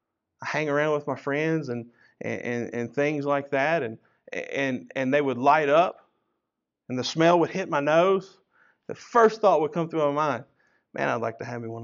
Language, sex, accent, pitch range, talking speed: English, male, American, 135-180 Hz, 215 wpm